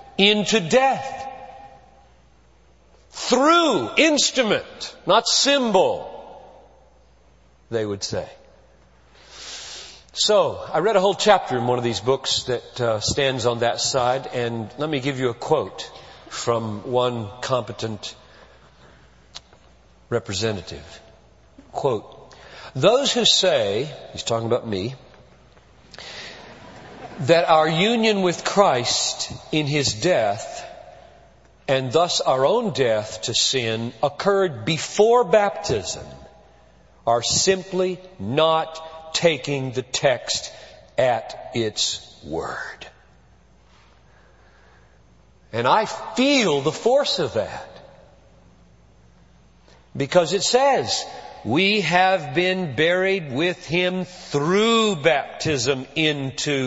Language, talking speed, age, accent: English, 95 wpm, 50-69, American